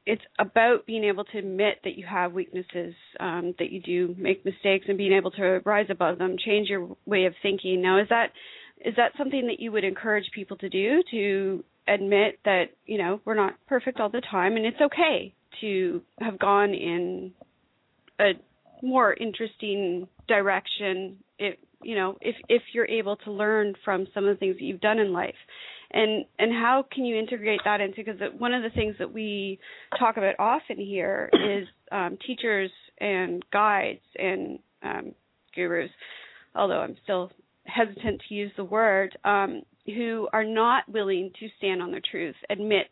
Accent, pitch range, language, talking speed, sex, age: American, 190-220 Hz, English, 180 wpm, female, 30-49